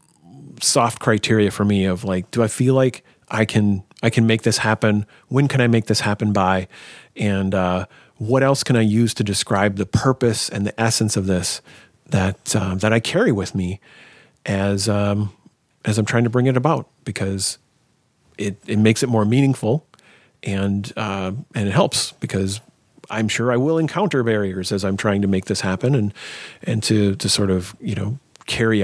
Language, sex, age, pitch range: English, male, 40-59, 105-130 Hz